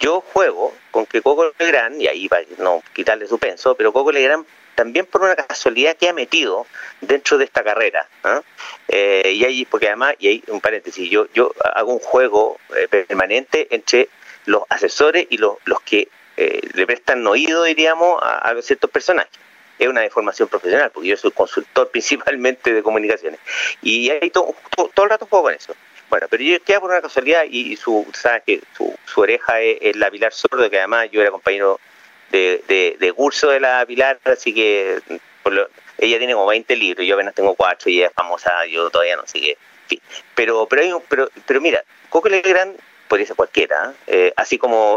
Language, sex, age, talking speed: Spanish, male, 40-59, 195 wpm